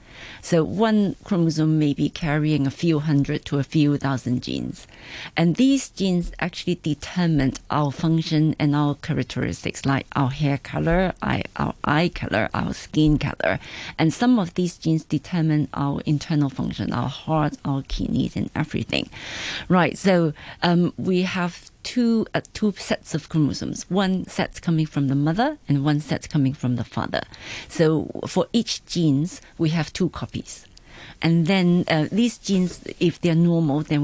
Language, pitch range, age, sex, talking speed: English, 145-175 Hz, 40-59, female, 160 wpm